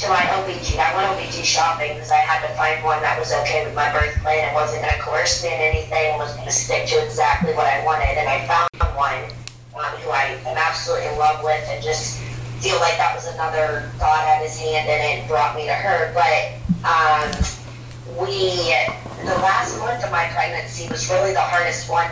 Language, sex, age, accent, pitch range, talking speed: English, female, 30-49, American, 120-155 Hz, 220 wpm